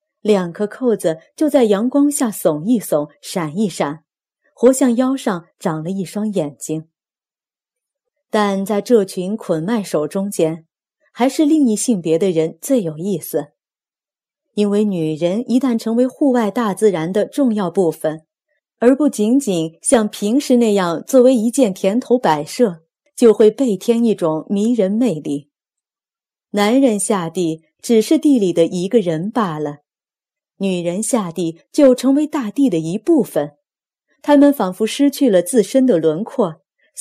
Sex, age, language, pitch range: female, 30-49, Chinese, 175-245 Hz